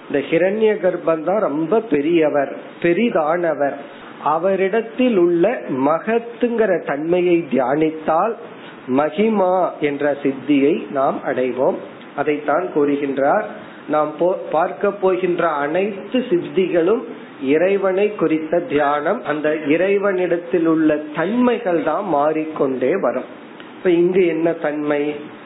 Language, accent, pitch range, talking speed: Tamil, native, 150-195 Hz, 60 wpm